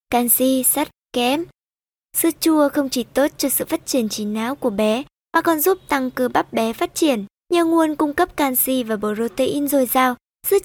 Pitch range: 245-310 Hz